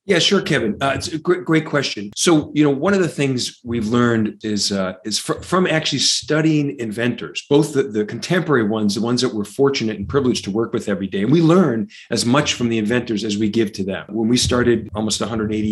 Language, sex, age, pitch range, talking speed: English, male, 40-59, 110-140 Hz, 235 wpm